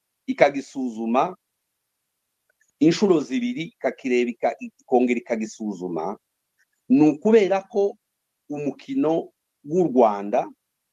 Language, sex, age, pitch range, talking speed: English, male, 50-69, 125-195 Hz, 55 wpm